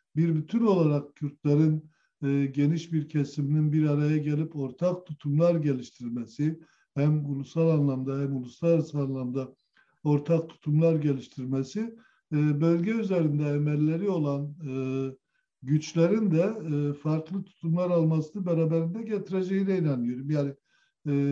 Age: 60-79